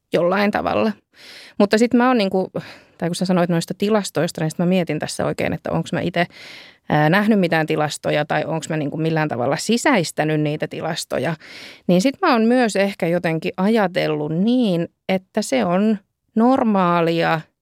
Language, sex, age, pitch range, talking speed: Finnish, female, 20-39, 165-215 Hz, 165 wpm